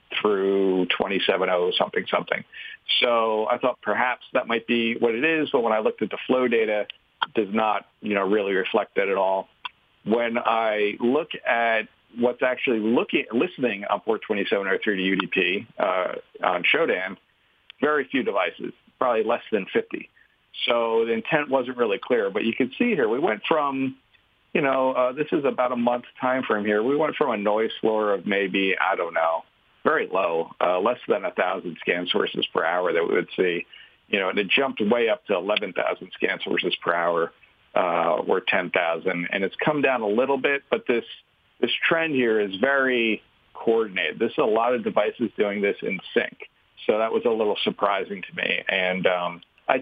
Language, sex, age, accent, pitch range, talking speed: English, male, 40-59, American, 100-130 Hz, 190 wpm